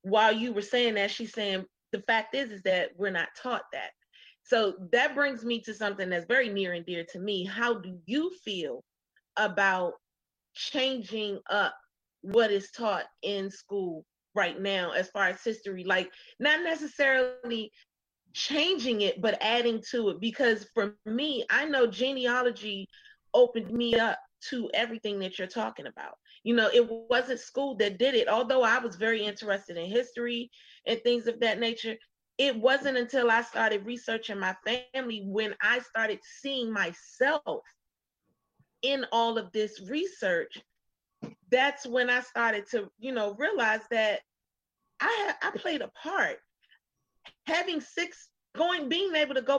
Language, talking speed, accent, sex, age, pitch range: English, 155 wpm, American, female, 30-49, 210-265 Hz